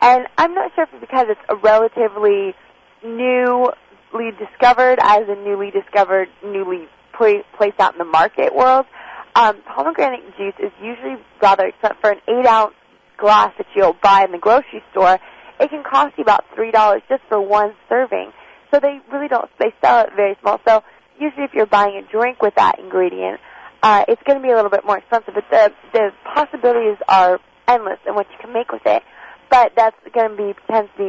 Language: English